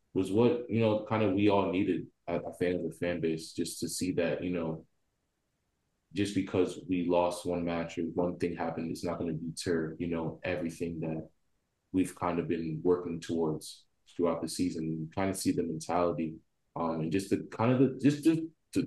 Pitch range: 85-100 Hz